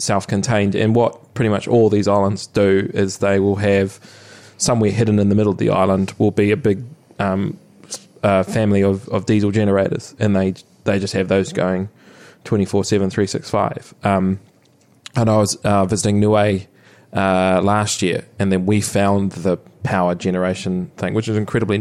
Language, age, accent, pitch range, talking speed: English, 20-39, Australian, 95-110 Hz, 175 wpm